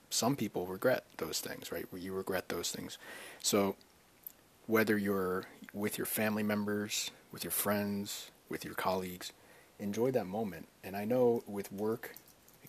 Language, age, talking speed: English, 30-49, 150 wpm